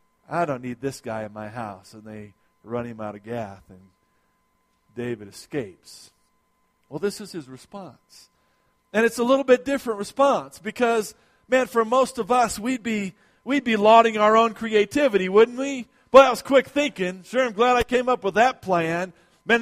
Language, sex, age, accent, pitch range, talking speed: English, male, 40-59, American, 170-230 Hz, 185 wpm